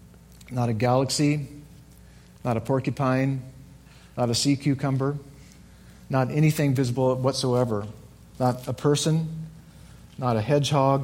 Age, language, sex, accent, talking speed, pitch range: 40-59, English, male, American, 110 wpm, 110-140 Hz